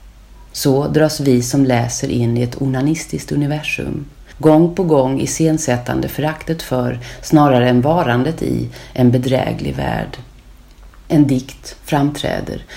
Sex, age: female, 40-59